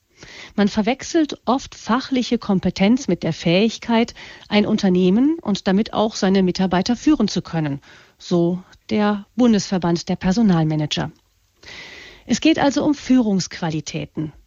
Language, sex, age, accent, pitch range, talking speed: German, female, 40-59, German, 180-230 Hz, 115 wpm